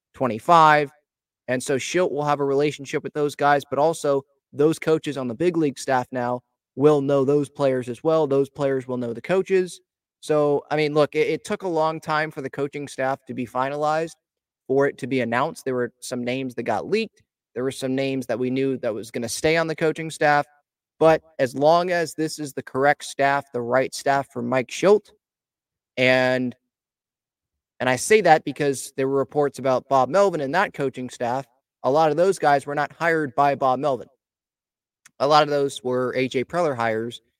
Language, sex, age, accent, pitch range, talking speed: English, male, 20-39, American, 125-155 Hz, 205 wpm